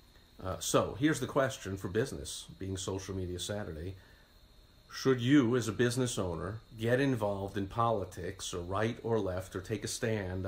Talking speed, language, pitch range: 165 wpm, English, 95-115 Hz